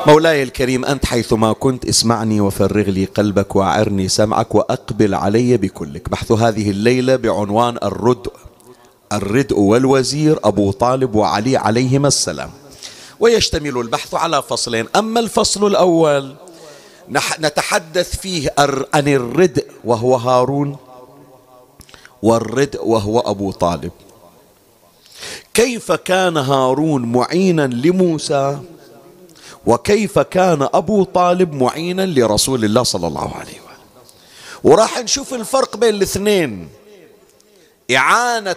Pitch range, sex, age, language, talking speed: 120-185 Hz, male, 40-59, Arabic, 100 wpm